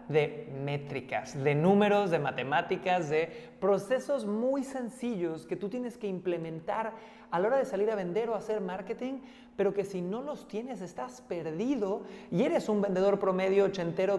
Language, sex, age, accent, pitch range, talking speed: Spanish, male, 30-49, Mexican, 165-215 Hz, 165 wpm